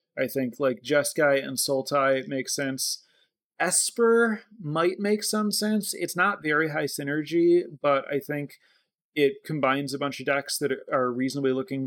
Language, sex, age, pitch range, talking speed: English, male, 30-49, 130-155 Hz, 155 wpm